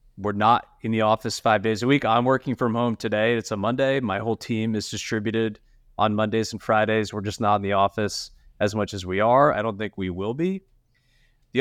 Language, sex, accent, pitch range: English, male, American, 105-125 Hz